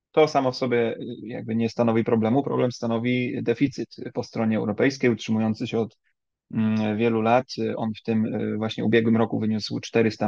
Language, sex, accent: Polish, male, native